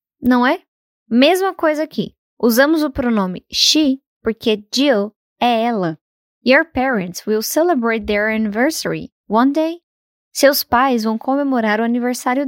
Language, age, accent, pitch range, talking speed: Portuguese, 10-29, Brazilian, 220-275 Hz, 130 wpm